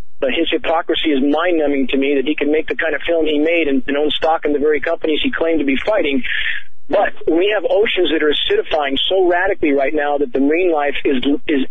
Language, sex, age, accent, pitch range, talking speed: English, male, 40-59, American, 155-255 Hz, 240 wpm